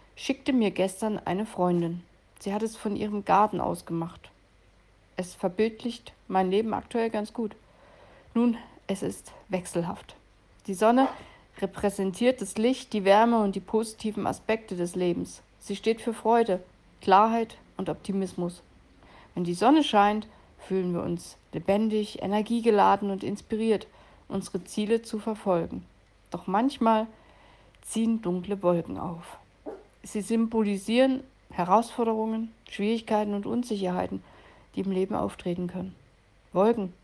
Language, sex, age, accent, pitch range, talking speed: German, female, 60-79, German, 180-220 Hz, 125 wpm